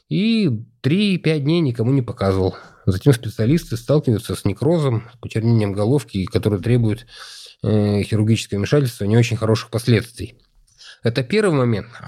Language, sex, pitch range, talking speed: Russian, male, 110-140 Hz, 135 wpm